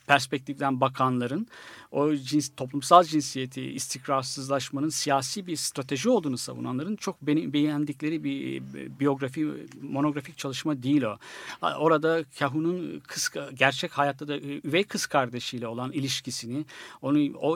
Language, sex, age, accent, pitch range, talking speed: Turkish, male, 60-79, native, 135-165 Hz, 115 wpm